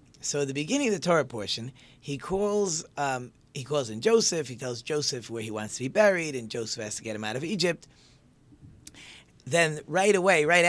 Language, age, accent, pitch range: English, 40-59, American, 125-165 Hz